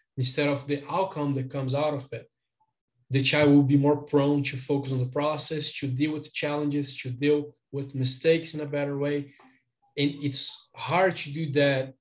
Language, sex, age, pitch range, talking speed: English, male, 10-29, 135-155 Hz, 190 wpm